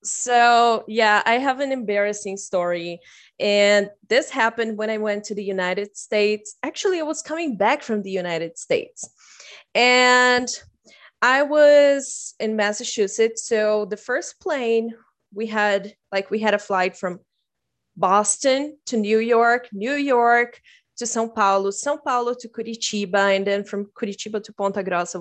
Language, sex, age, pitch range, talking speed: English, female, 20-39, 205-265 Hz, 150 wpm